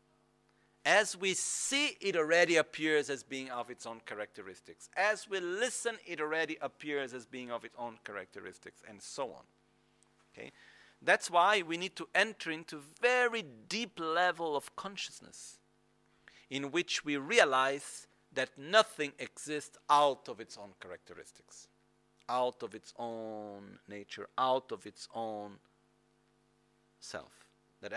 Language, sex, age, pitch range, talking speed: Italian, male, 50-69, 110-170 Hz, 135 wpm